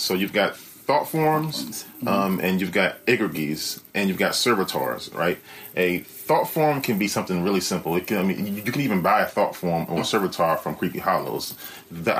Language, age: English, 30-49